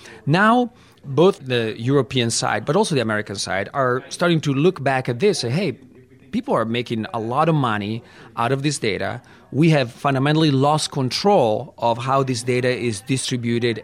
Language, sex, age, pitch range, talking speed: English, male, 30-49, 120-160 Hz, 180 wpm